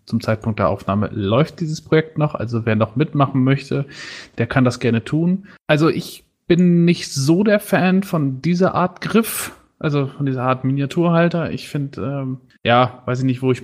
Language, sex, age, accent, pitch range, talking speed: German, male, 30-49, German, 120-155 Hz, 190 wpm